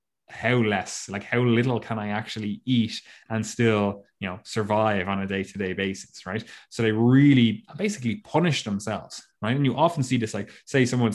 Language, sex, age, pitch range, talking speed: English, male, 20-39, 105-120 Hz, 185 wpm